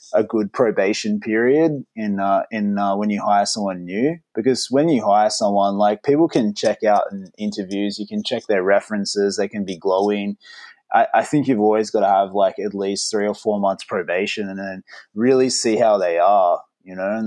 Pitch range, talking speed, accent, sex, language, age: 100-120 Hz, 210 wpm, Australian, male, English, 20-39